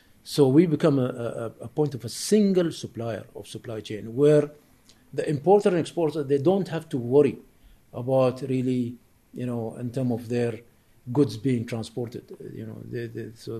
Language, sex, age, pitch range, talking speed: English, male, 50-69, 115-145 Hz, 170 wpm